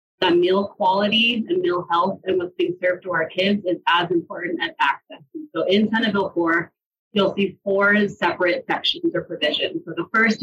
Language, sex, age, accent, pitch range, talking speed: English, female, 30-49, American, 180-220 Hz, 190 wpm